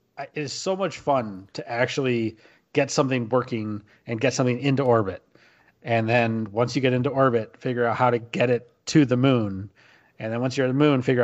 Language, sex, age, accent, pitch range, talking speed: English, male, 30-49, American, 110-135 Hz, 210 wpm